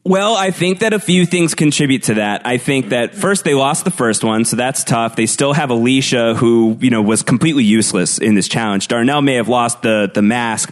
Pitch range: 115-140 Hz